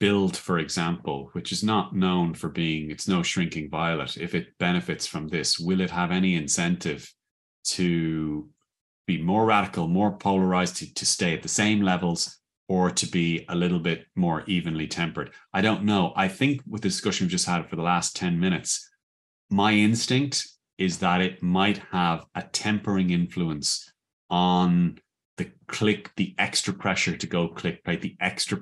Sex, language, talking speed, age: male, English, 175 wpm, 30-49